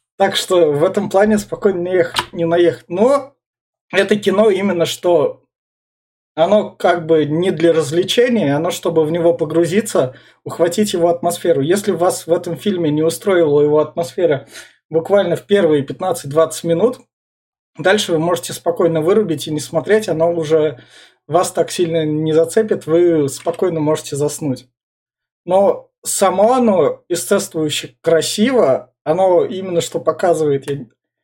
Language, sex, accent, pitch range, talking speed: Russian, male, native, 155-190 Hz, 135 wpm